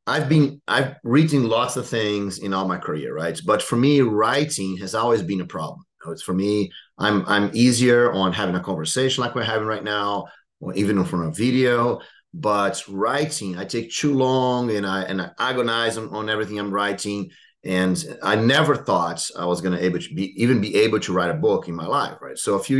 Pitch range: 95-125 Hz